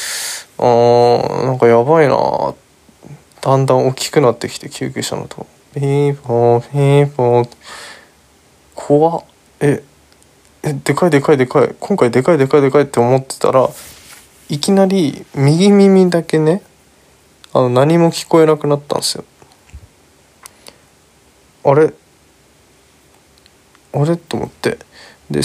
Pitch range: 120-145 Hz